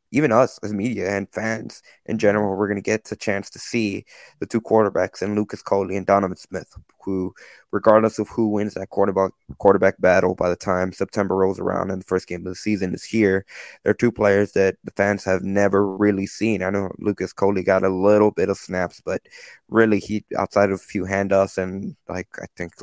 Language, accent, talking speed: English, American, 215 wpm